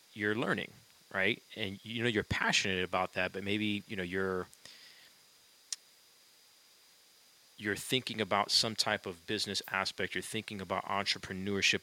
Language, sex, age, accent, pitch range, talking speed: English, male, 30-49, American, 95-105 Hz, 135 wpm